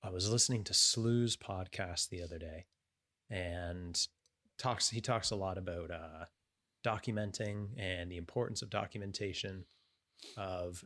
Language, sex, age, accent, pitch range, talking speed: English, male, 30-49, American, 90-110 Hz, 135 wpm